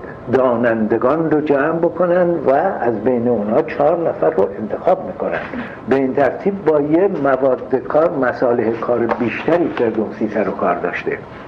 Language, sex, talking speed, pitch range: Persian, male, 135 wpm, 125-160 Hz